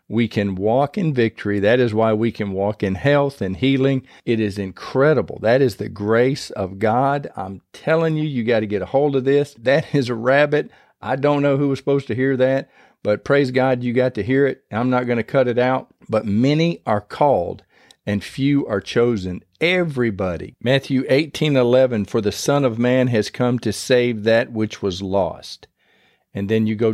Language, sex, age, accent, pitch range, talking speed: English, male, 50-69, American, 105-135 Hz, 205 wpm